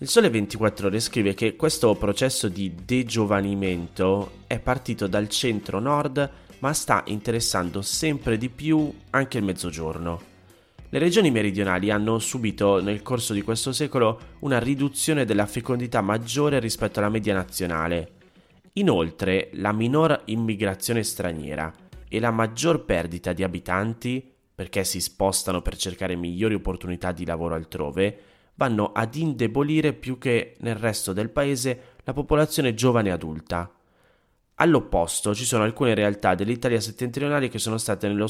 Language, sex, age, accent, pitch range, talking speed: Italian, male, 30-49, native, 95-125 Hz, 135 wpm